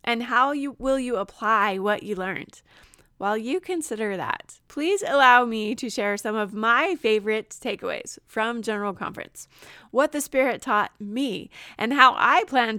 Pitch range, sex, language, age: 210-290 Hz, female, English, 20-39